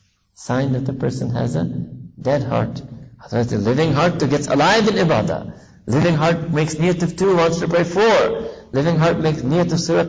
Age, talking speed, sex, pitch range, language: 50-69, 195 wpm, male, 125-160 Hz, English